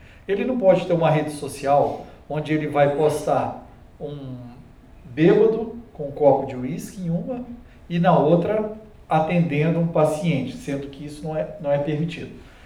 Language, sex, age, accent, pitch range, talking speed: Portuguese, male, 40-59, Brazilian, 150-195 Hz, 155 wpm